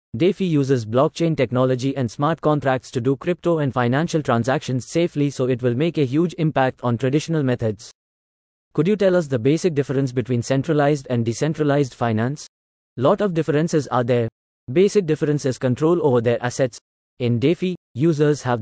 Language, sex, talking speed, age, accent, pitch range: English, male, 170 wpm, 30-49, Indian, 125-155 Hz